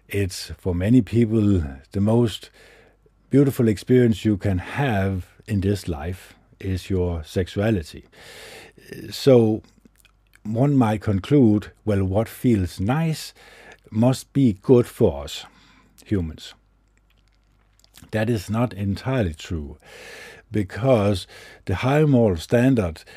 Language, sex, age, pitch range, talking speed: English, male, 60-79, 95-120 Hz, 105 wpm